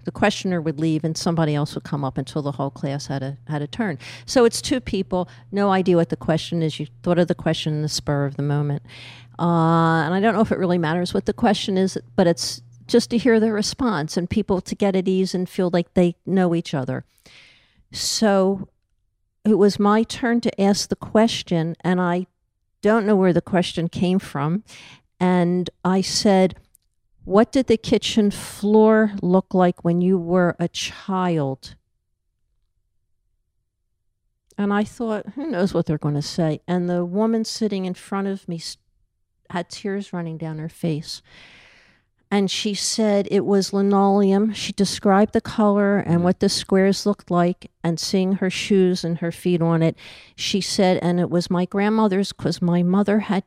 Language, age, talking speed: English, 50-69, 185 wpm